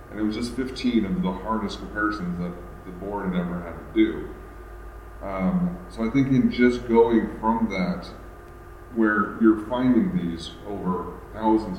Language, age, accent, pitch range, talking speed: English, 30-49, American, 85-110 Hz, 160 wpm